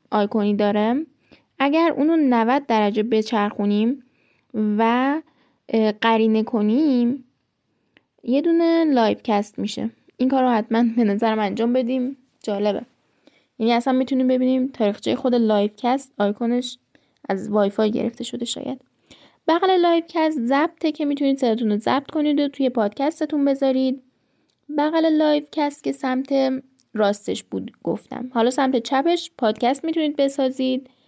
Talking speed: 125 wpm